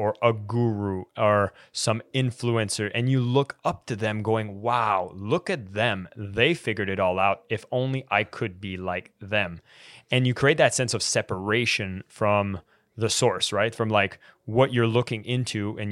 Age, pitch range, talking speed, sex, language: 20-39, 100-125 Hz, 175 wpm, male, English